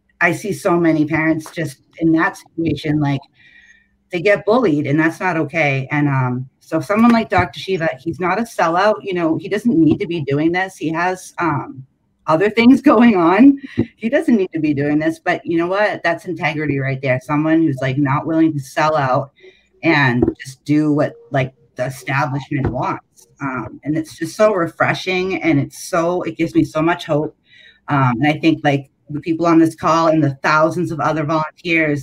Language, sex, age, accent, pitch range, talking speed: English, female, 30-49, American, 145-175 Hz, 200 wpm